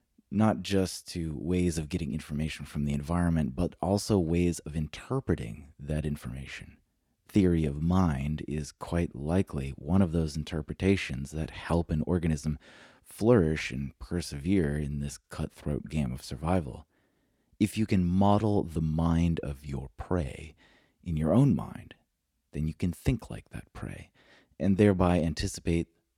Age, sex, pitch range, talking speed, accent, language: 30-49, male, 75-90 Hz, 145 wpm, American, English